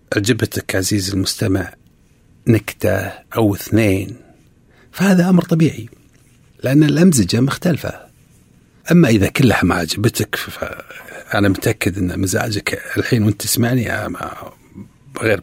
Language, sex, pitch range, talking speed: Arabic, male, 100-135 Hz, 95 wpm